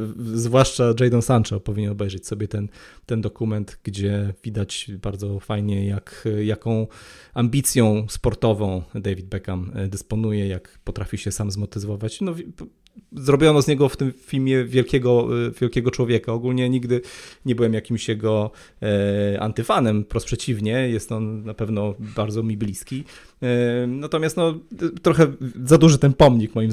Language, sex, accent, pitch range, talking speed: Polish, male, native, 110-130 Hz, 135 wpm